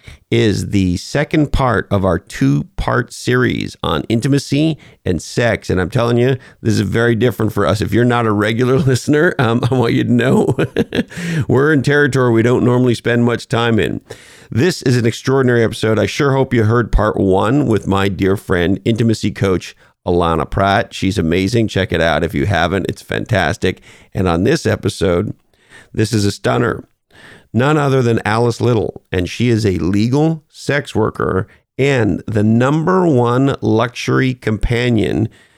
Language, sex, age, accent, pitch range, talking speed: English, male, 50-69, American, 100-130 Hz, 170 wpm